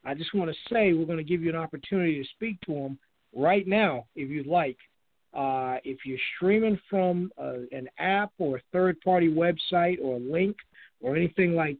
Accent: American